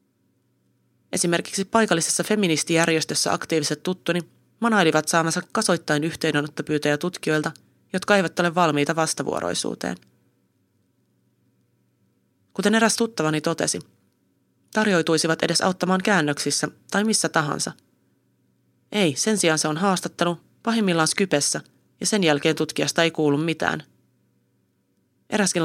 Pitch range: 150-180 Hz